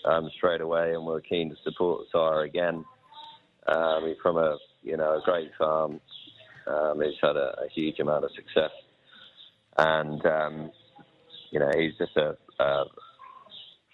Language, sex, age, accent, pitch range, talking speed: English, male, 30-49, British, 80-105 Hz, 160 wpm